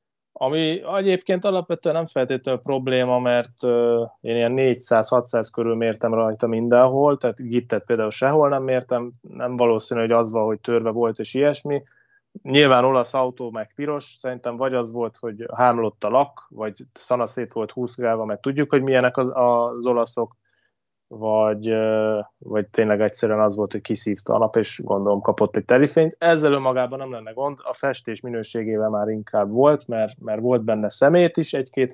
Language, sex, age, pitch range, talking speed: Hungarian, male, 20-39, 110-135 Hz, 165 wpm